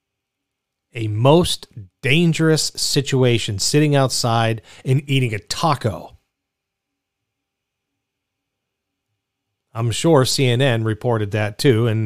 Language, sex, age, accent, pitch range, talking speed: English, male, 40-59, American, 110-140 Hz, 85 wpm